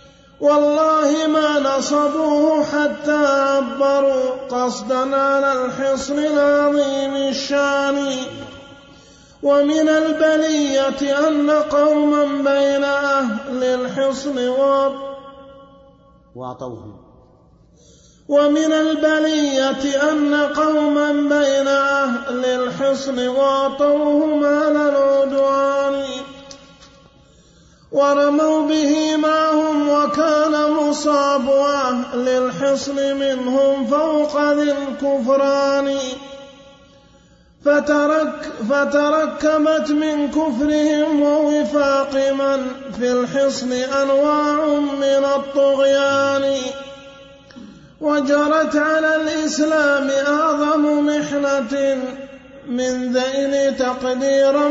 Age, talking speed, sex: 30-49, 60 wpm, male